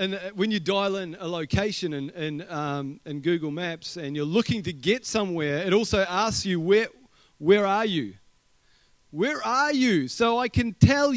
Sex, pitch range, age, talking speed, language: male, 175-240 Hz, 30-49, 185 wpm, English